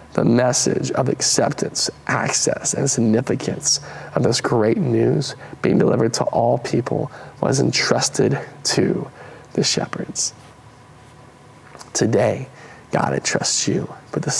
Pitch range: 115-130 Hz